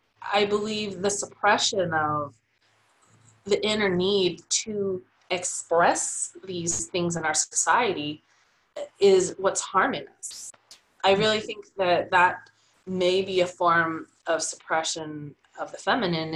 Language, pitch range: English, 160-195 Hz